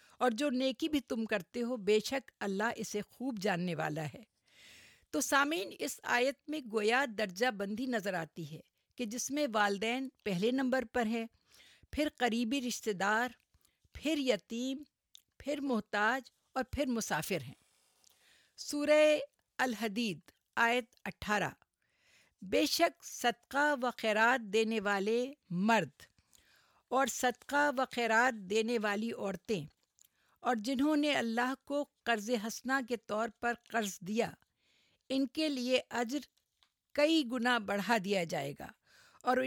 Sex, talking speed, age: female, 130 wpm, 50-69